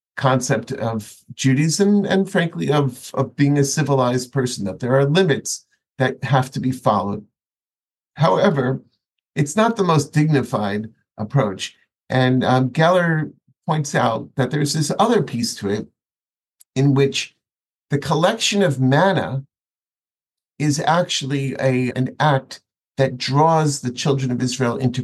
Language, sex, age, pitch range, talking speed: English, male, 50-69, 125-155 Hz, 135 wpm